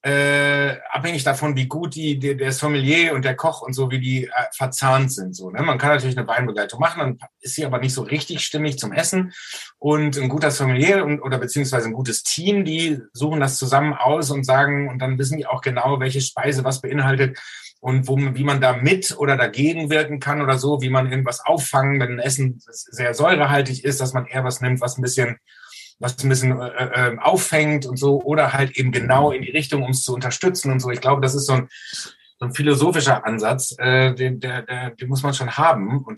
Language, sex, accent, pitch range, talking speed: German, male, German, 130-150 Hz, 220 wpm